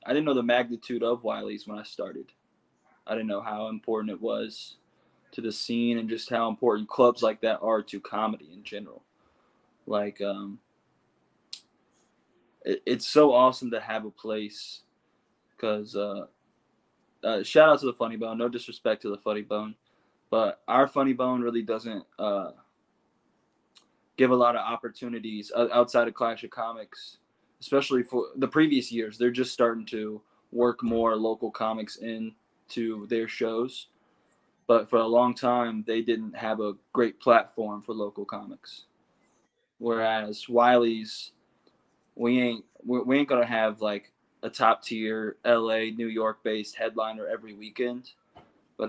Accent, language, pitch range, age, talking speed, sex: American, English, 110-120 Hz, 20-39, 155 wpm, male